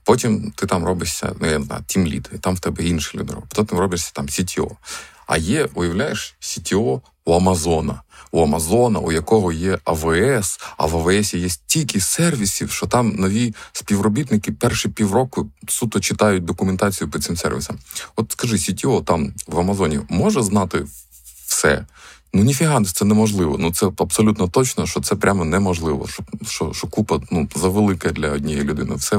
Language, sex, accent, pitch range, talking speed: Ukrainian, male, native, 85-105 Hz, 165 wpm